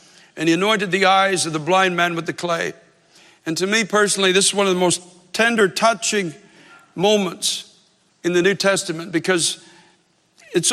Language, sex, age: English, male, 60-79